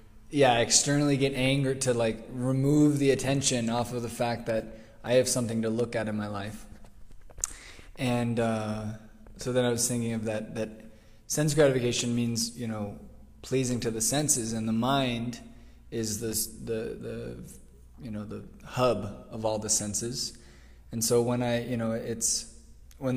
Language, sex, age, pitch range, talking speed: English, male, 20-39, 105-120 Hz, 170 wpm